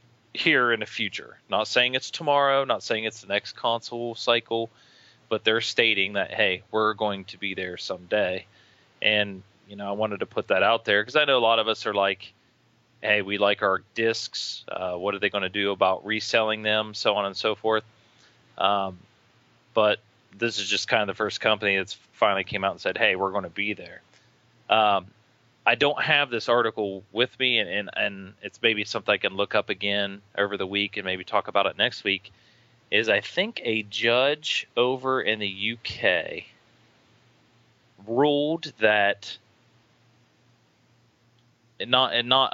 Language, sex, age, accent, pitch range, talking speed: English, male, 30-49, American, 100-120 Hz, 185 wpm